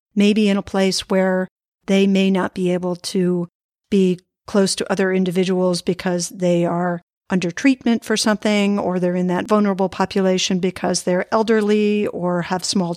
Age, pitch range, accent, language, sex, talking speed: 50-69, 185-215 Hz, American, English, female, 160 wpm